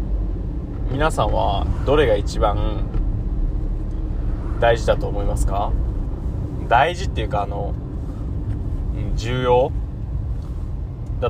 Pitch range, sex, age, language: 100-120 Hz, male, 20-39, Japanese